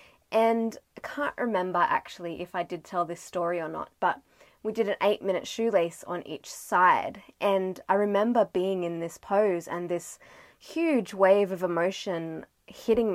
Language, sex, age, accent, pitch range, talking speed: English, female, 20-39, Australian, 180-235 Hz, 170 wpm